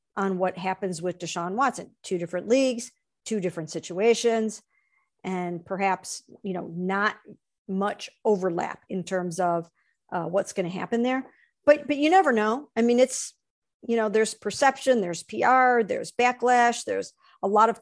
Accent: American